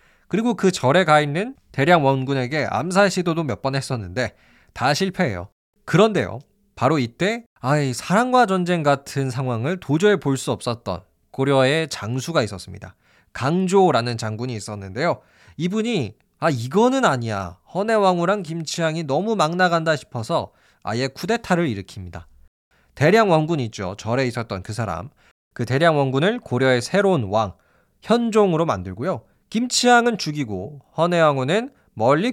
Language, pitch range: Korean, 115-190 Hz